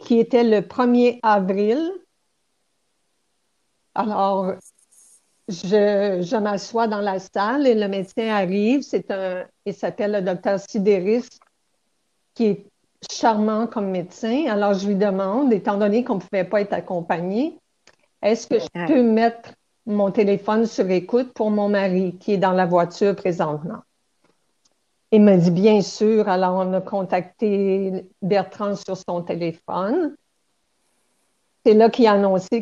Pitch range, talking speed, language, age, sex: 190-225 Hz, 140 wpm, French, 60-79, female